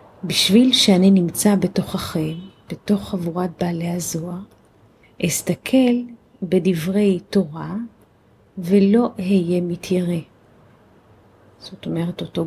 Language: Hebrew